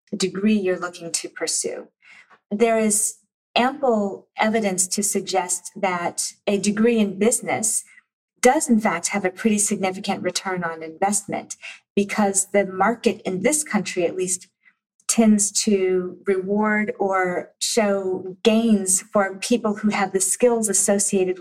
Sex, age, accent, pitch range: female, 40-59, American, 180-210 Hz